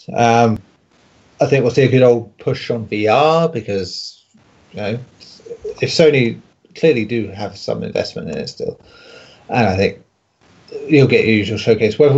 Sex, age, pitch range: male, 30-49, 100-140 Hz